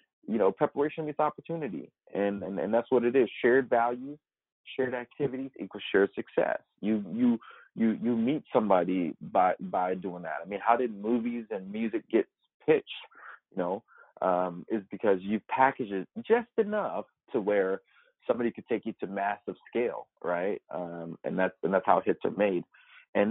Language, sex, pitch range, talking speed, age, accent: English, male, 100-135 Hz, 175 wpm, 30-49, American